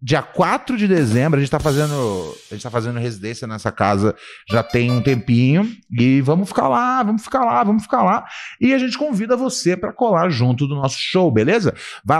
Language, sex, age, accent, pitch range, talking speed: Portuguese, male, 30-49, Brazilian, 115-160 Hz, 195 wpm